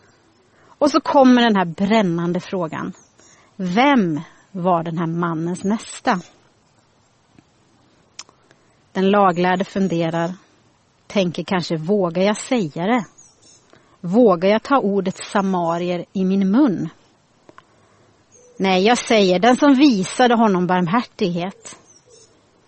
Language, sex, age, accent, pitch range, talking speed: Swedish, female, 30-49, native, 190-265 Hz, 100 wpm